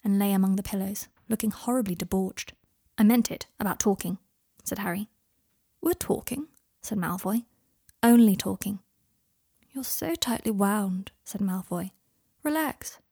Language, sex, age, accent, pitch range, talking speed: English, female, 20-39, British, 190-235 Hz, 130 wpm